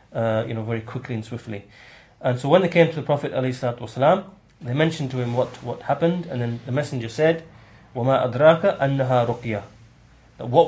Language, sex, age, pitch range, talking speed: English, male, 30-49, 120-145 Hz, 175 wpm